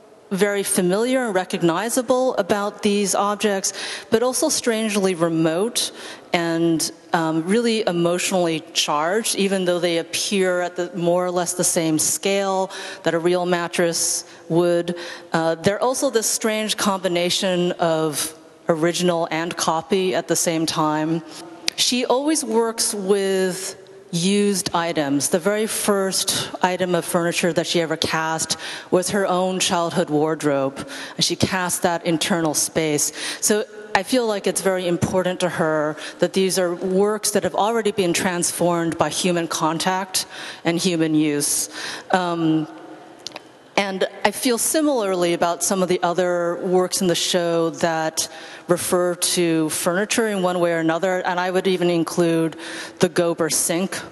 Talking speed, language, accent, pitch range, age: 140 wpm, English, American, 170-195 Hz, 30-49